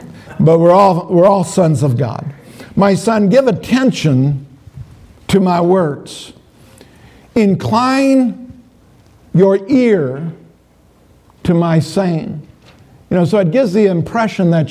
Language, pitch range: English, 155-200 Hz